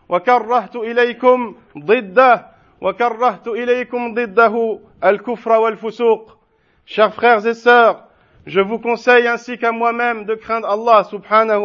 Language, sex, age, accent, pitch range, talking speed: French, male, 50-69, French, 225-250 Hz, 70 wpm